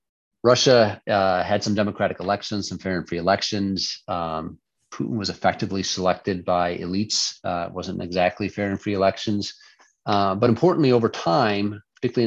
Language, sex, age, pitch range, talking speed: English, male, 40-59, 90-115 Hz, 155 wpm